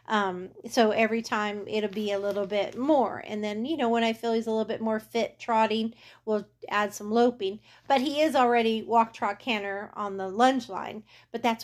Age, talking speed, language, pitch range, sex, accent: 40-59, 210 wpm, English, 200-235 Hz, female, American